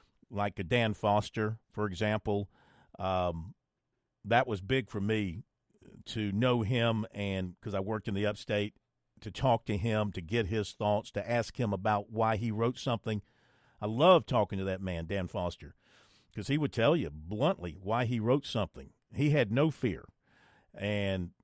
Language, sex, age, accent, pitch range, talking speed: English, male, 50-69, American, 105-130 Hz, 170 wpm